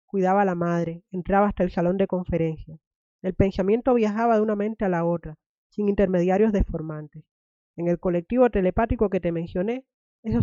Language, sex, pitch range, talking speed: Spanish, female, 175-215 Hz, 175 wpm